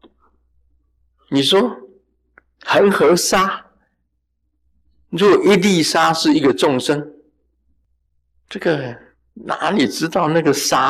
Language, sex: Chinese, male